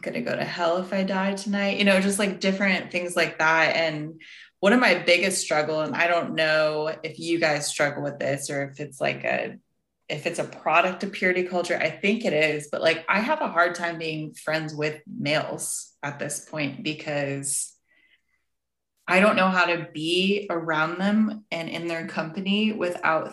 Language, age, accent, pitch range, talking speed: English, 20-39, American, 155-190 Hz, 195 wpm